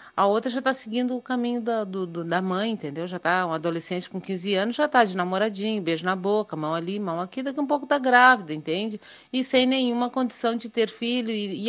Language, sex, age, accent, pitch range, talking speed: Portuguese, female, 40-59, Brazilian, 180-235 Hz, 240 wpm